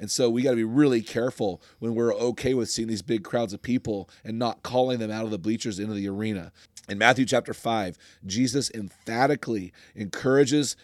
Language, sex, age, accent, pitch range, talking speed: English, male, 30-49, American, 110-135 Hz, 200 wpm